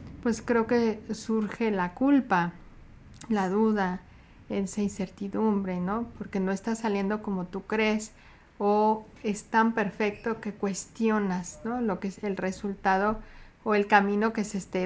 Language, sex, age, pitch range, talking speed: Spanish, female, 40-59, 195-225 Hz, 145 wpm